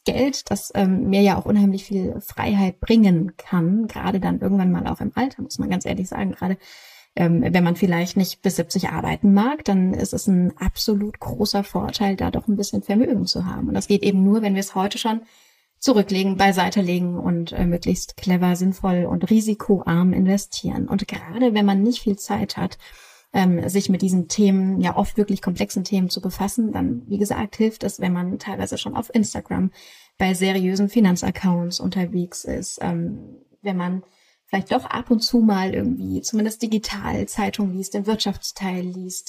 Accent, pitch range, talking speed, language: German, 185-215 Hz, 185 wpm, English